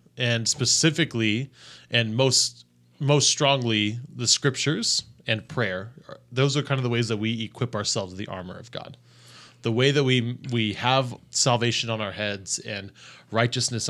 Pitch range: 105-130 Hz